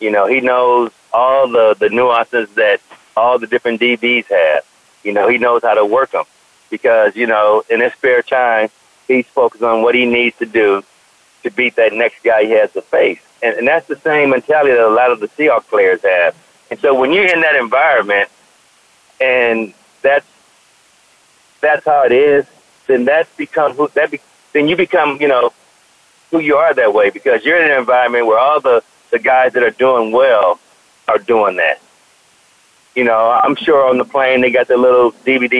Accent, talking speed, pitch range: American, 200 wpm, 120-180 Hz